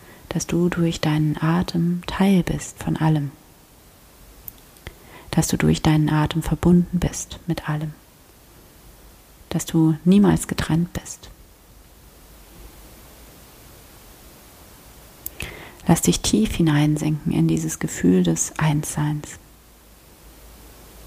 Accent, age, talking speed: German, 40-59, 90 wpm